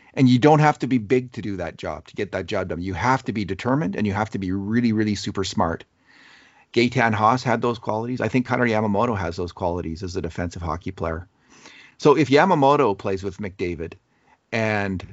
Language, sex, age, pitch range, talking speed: English, male, 40-59, 95-125 Hz, 215 wpm